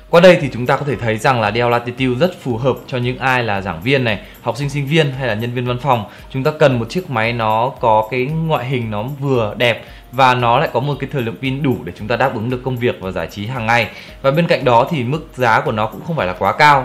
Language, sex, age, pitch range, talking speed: Vietnamese, male, 20-39, 115-150 Hz, 300 wpm